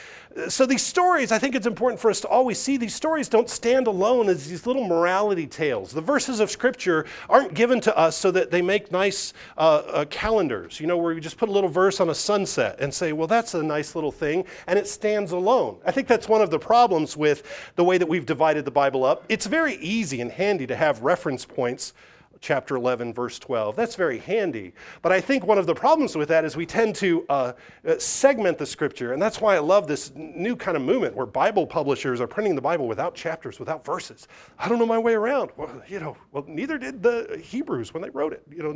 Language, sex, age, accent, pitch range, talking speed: English, male, 40-59, American, 155-230 Hz, 235 wpm